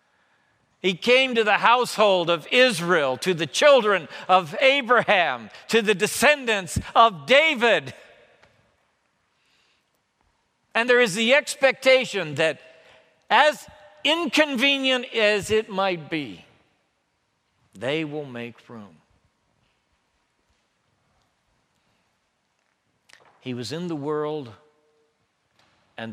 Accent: American